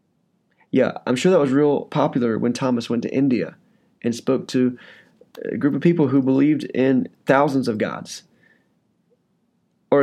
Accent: American